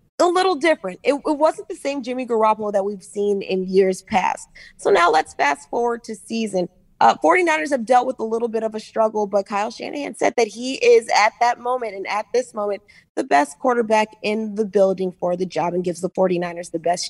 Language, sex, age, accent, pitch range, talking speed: English, female, 20-39, American, 185-230 Hz, 220 wpm